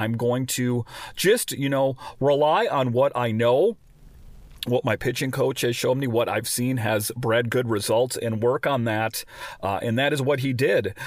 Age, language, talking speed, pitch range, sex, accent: 40-59, English, 195 wpm, 115-145 Hz, male, American